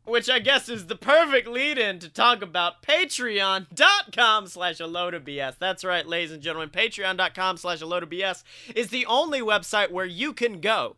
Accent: American